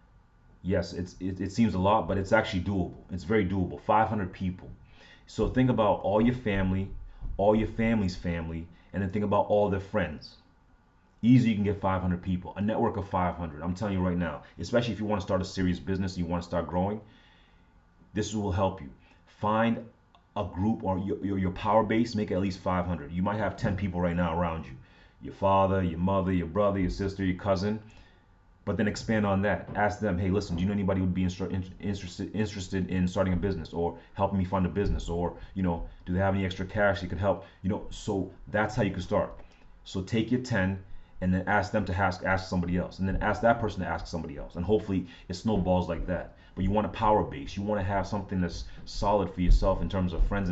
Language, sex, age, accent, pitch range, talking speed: English, male, 30-49, American, 90-100 Hz, 230 wpm